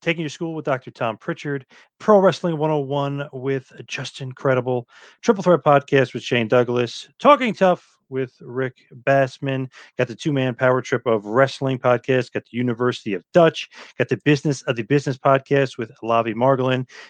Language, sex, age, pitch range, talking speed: English, male, 30-49, 110-135 Hz, 165 wpm